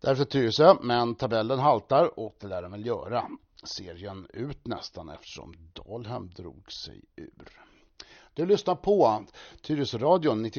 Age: 60-79